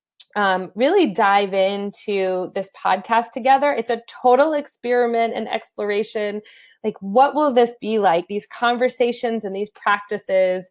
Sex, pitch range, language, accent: female, 200-245 Hz, English, American